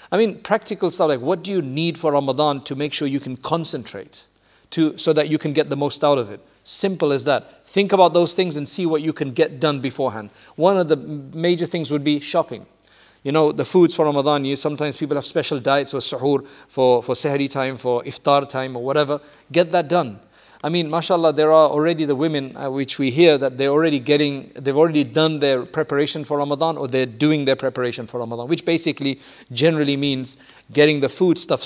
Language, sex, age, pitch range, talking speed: English, male, 40-59, 135-160 Hz, 220 wpm